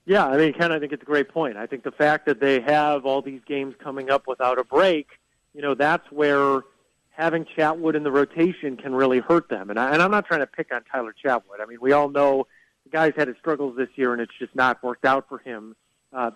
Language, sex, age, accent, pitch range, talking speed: English, male, 40-59, American, 130-155 Hz, 255 wpm